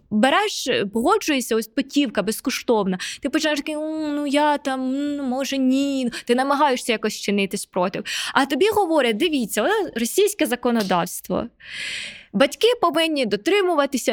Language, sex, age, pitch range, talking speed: Ukrainian, female, 20-39, 205-295 Hz, 115 wpm